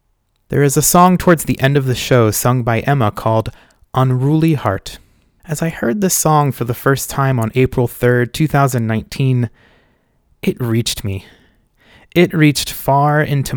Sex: male